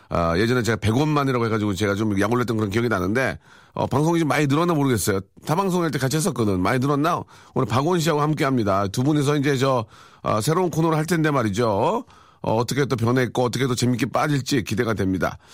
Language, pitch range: Korean, 120-165 Hz